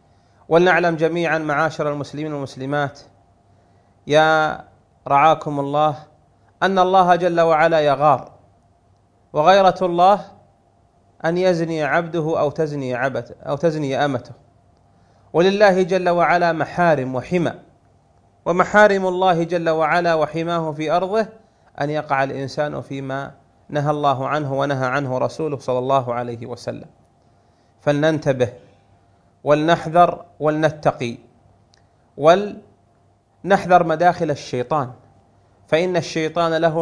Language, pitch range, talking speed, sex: Arabic, 125-170 Hz, 95 wpm, male